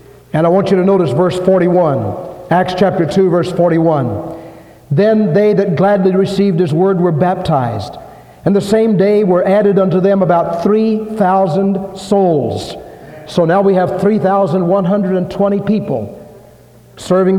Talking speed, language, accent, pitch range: 140 wpm, English, American, 175-205 Hz